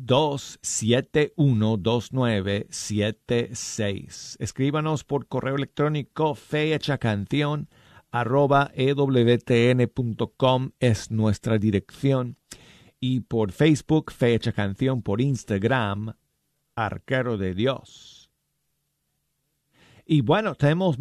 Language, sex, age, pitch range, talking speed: Spanish, male, 50-69, 110-155 Hz, 70 wpm